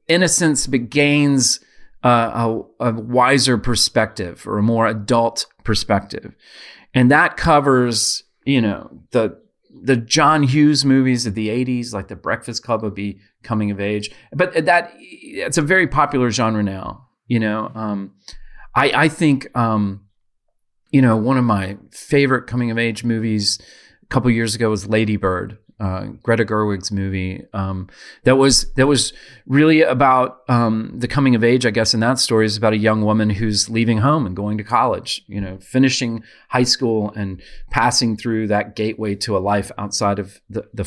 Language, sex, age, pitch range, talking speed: English, male, 30-49, 105-135 Hz, 170 wpm